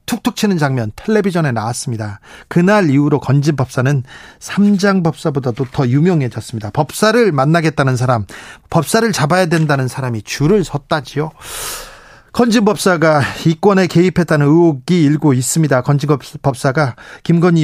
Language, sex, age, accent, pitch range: Korean, male, 40-59, native, 130-175 Hz